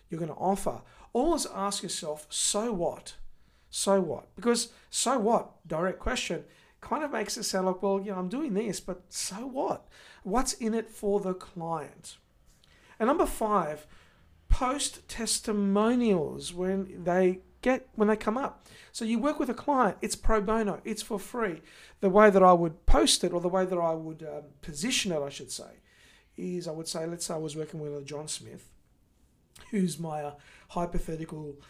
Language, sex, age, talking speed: English, male, 50-69, 175 wpm